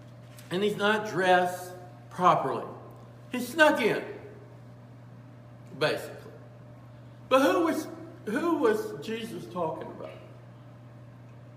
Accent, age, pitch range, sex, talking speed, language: American, 60-79, 120-145 Hz, male, 90 wpm, English